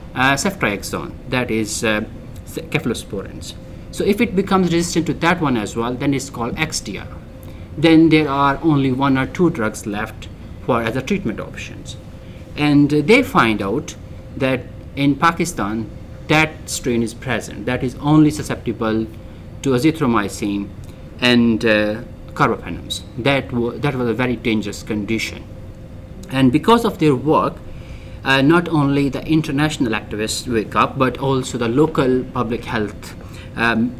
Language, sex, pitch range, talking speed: English, male, 105-135 Hz, 145 wpm